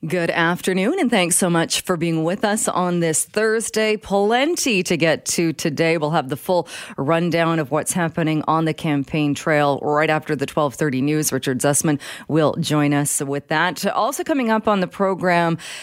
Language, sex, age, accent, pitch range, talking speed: English, female, 30-49, American, 145-185 Hz, 180 wpm